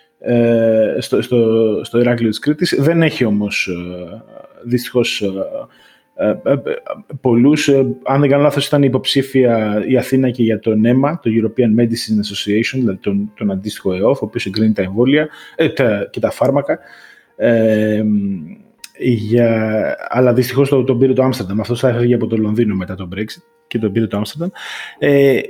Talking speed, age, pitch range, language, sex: 150 wpm, 20-39, 115-150 Hz, Greek, male